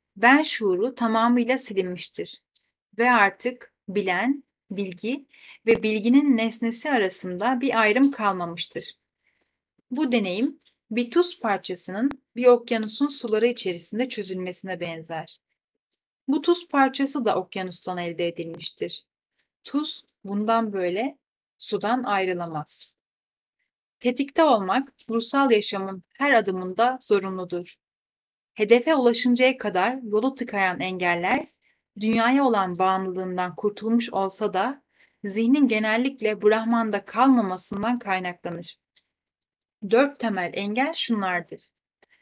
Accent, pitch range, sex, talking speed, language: native, 190-255 Hz, female, 95 wpm, Turkish